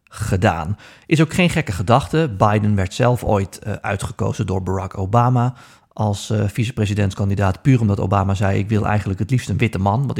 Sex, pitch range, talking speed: male, 100-120 Hz, 180 wpm